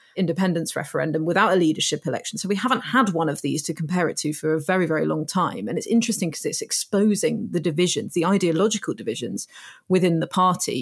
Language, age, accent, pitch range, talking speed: English, 30-49, British, 160-190 Hz, 205 wpm